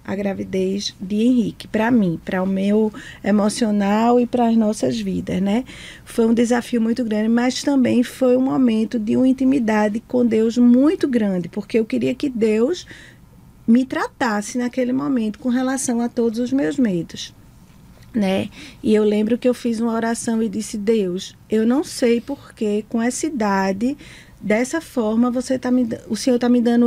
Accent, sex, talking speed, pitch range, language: Brazilian, female, 165 wpm, 220-265 Hz, Portuguese